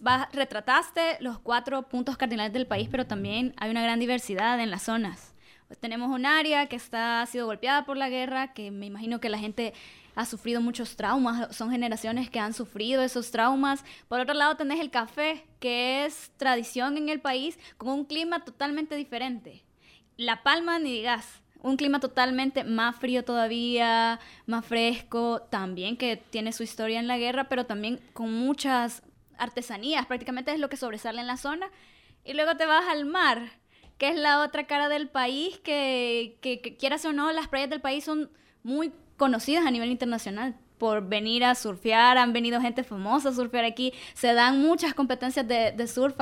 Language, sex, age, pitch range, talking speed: Spanish, female, 10-29, 235-280 Hz, 185 wpm